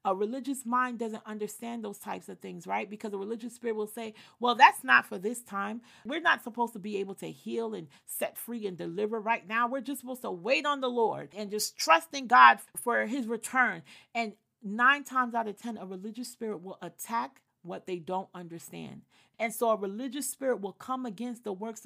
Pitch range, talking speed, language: 210-255 Hz, 215 wpm, English